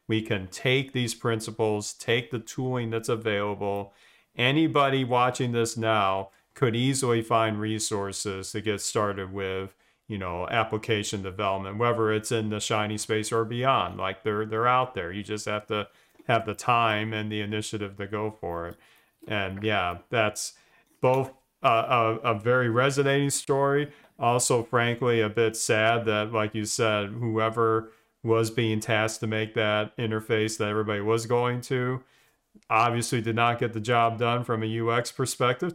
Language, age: English, 40-59